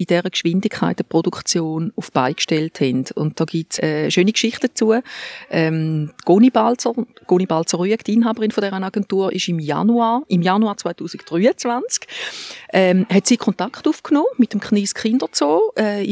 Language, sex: German, female